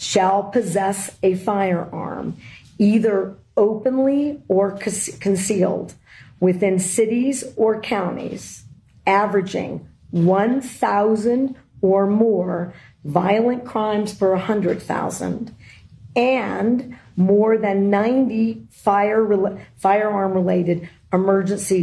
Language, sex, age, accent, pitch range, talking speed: English, female, 40-59, American, 170-215 Hz, 80 wpm